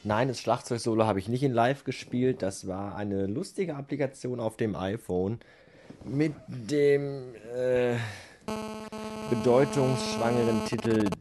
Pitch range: 105-140 Hz